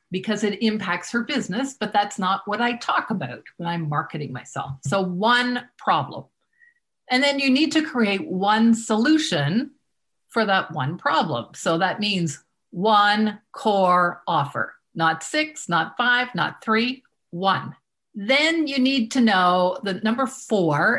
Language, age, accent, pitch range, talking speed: English, 50-69, American, 170-235 Hz, 150 wpm